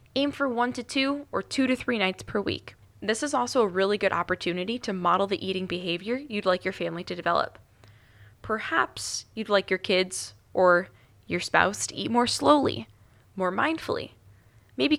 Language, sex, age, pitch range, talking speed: English, female, 20-39, 170-230 Hz, 180 wpm